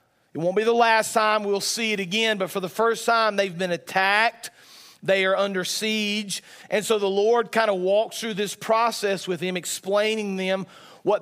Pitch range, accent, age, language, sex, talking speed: 185-210 Hz, American, 40-59, English, male, 200 wpm